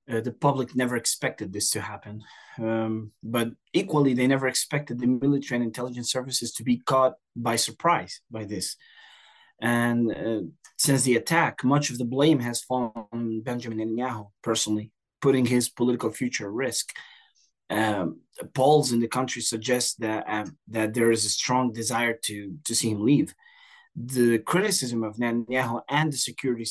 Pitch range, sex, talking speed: 115-135 Hz, male, 165 wpm